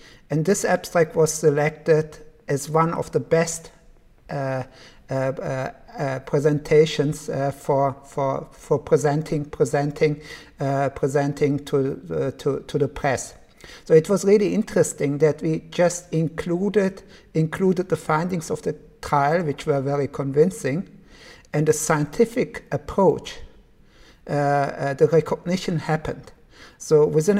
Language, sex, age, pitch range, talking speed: English, male, 60-79, 145-170 Hz, 125 wpm